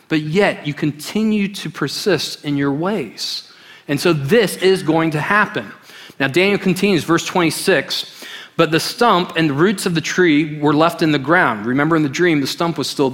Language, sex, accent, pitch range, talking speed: English, male, American, 150-200 Hz, 195 wpm